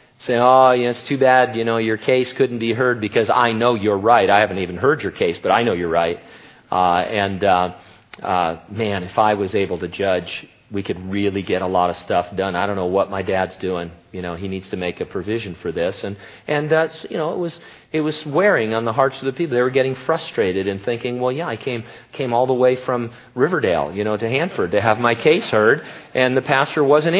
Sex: male